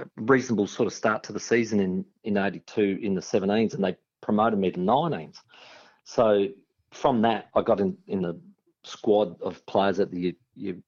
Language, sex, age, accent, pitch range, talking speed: English, male, 50-69, Australian, 90-110 Hz, 180 wpm